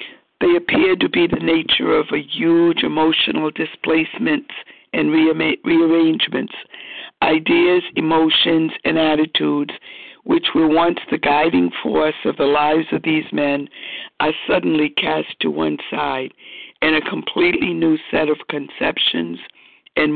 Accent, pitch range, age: American, 150-190 Hz, 60-79